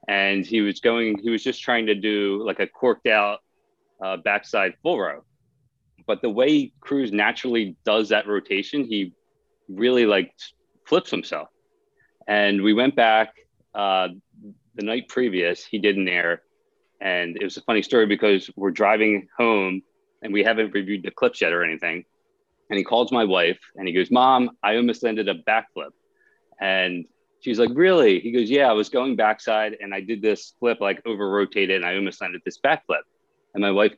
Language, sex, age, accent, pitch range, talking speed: English, male, 30-49, American, 100-155 Hz, 180 wpm